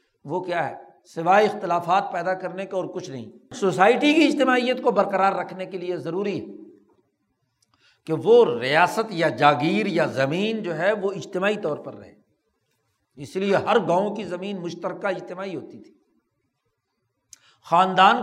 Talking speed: 150 wpm